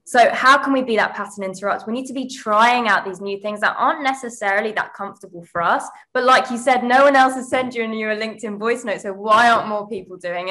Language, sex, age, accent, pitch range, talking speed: English, female, 20-39, British, 185-230 Hz, 265 wpm